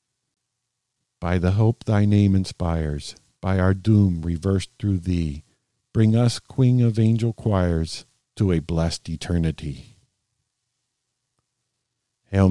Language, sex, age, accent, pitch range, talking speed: English, male, 50-69, American, 95-125 Hz, 110 wpm